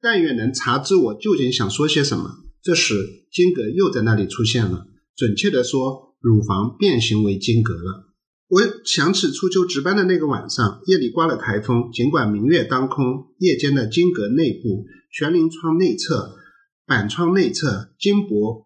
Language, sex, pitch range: Chinese, male, 110-175 Hz